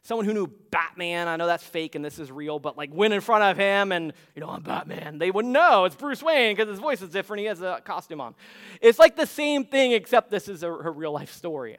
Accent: American